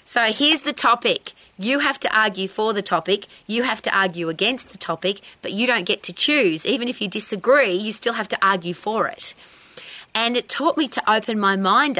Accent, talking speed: Australian, 215 wpm